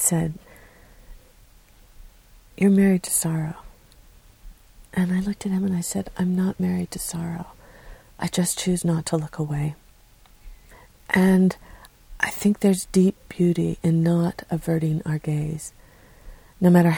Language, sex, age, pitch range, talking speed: English, female, 50-69, 155-185 Hz, 135 wpm